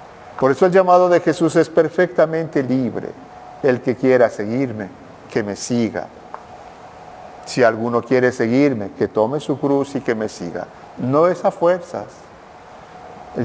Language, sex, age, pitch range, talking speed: Spanish, male, 50-69, 130-165 Hz, 145 wpm